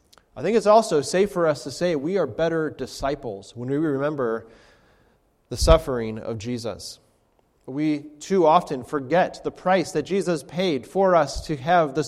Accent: American